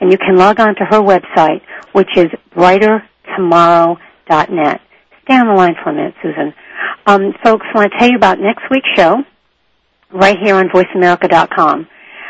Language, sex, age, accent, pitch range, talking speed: English, female, 60-79, American, 175-220 Hz, 165 wpm